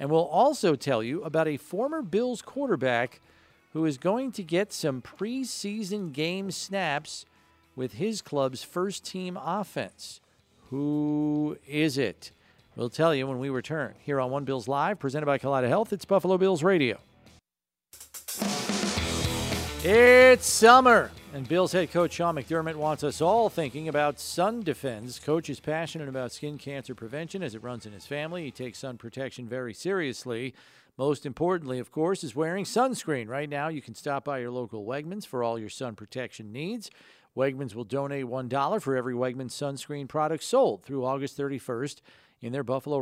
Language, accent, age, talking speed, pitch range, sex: English, American, 40-59, 165 wpm, 130-175 Hz, male